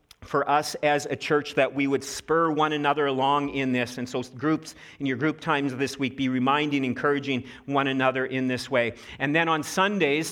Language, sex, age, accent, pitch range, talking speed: English, male, 40-59, American, 135-160 Hz, 205 wpm